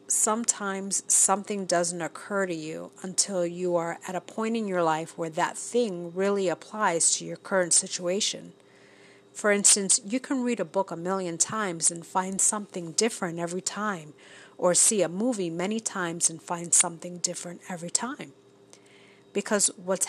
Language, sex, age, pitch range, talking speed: English, female, 40-59, 170-210 Hz, 160 wpm